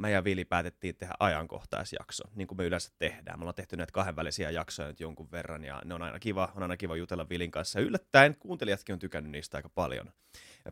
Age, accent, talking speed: 20-39, native, 225 wpm